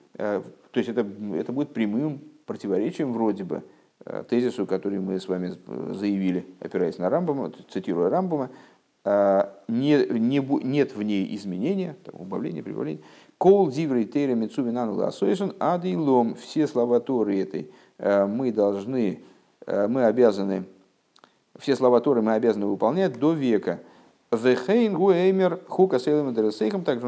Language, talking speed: Russian, 100 wpm